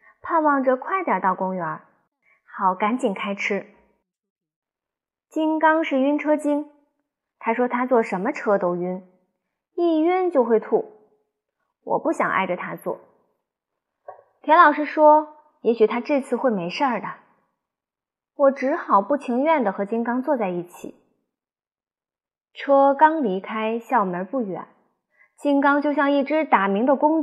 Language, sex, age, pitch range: Chinese, female, 20-39, 205-305 Hz